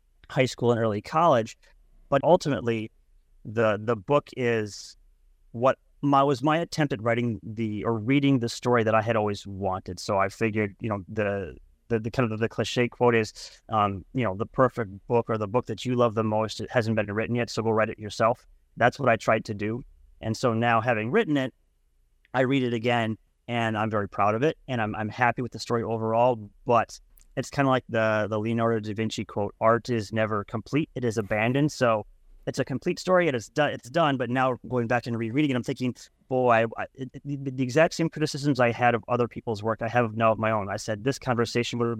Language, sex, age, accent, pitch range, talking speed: English, male, 30-49, American, 110-125 Hz, 225 wpm